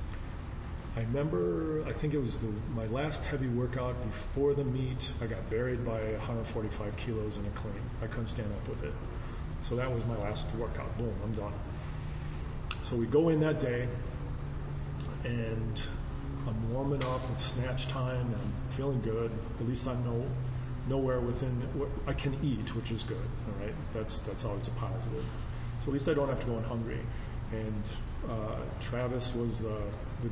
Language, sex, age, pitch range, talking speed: English, male, 40-59, 110-125 Hz, 180 wpm